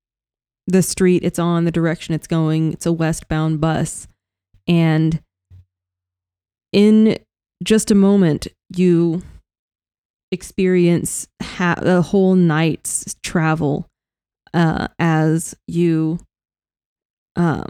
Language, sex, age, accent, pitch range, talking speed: English, female, 20-39, American, 155-180 Hz, 95 wpm